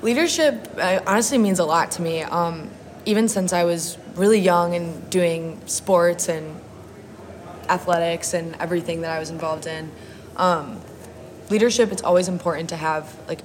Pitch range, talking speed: 160-180 Hz, 150 wpm